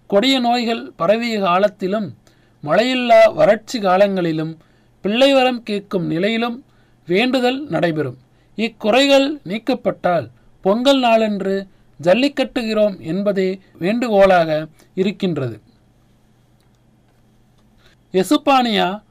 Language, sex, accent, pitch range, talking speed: Tamil, male, native, 165-235 Hz, 65 wpm